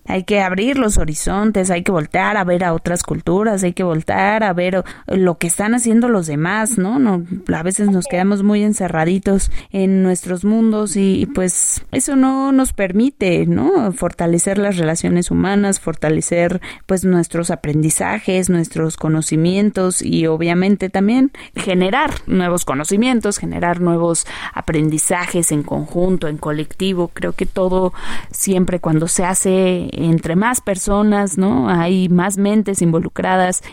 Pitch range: 170-205 Hz